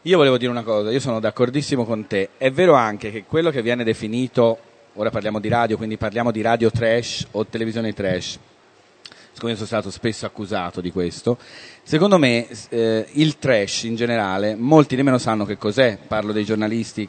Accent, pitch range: native, 110-130 Hz